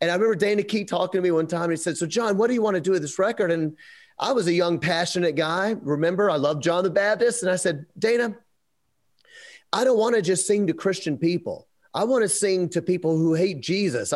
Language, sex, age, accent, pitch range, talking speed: English, male, 30-49, American, 155-205 Hz, 250 wpm